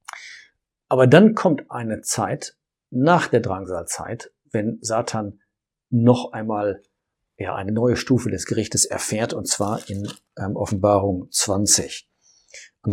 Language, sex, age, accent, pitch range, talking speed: German, male, 50-69, German, 105-120 Hz, 115 wpm